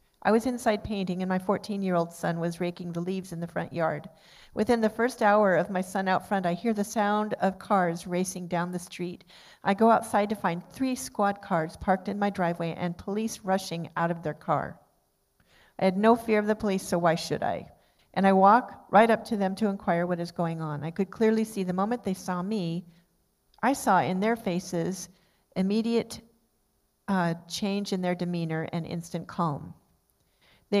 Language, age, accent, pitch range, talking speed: English, 50-69, American, 170-205 Hz, 205 wpm